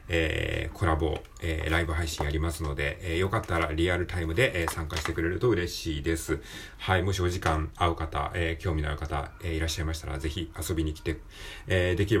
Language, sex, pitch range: Japanese, male, 80-110 Hz